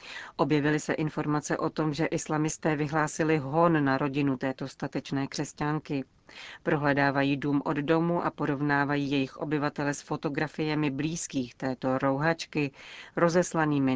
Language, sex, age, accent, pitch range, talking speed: Czech, female, 40-59, native, 135-160 Hz, 120 wpm